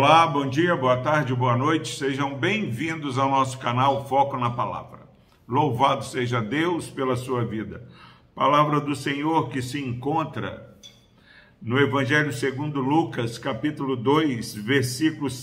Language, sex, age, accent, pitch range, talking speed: Portuguese, male, 50-69, Brazilian, 125-150 Hz, 130 wpm